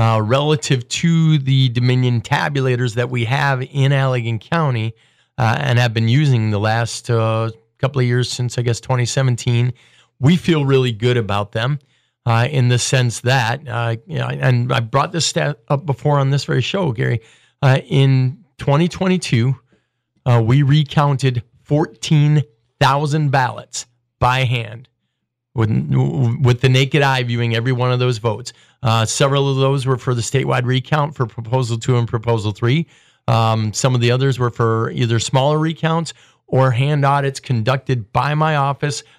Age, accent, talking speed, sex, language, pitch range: 40-59, American, 155 wpm, male, English, 115-140 Hz